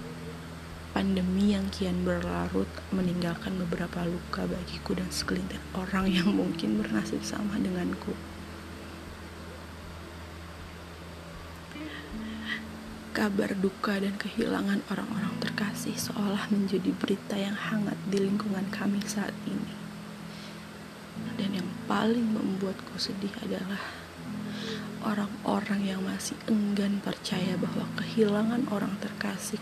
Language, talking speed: Indonesian, 95 wpm